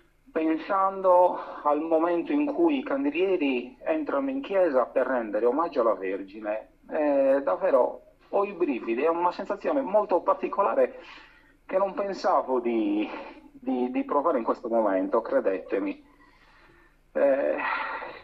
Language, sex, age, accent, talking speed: Italian, male, 40-59, native, 120 wpm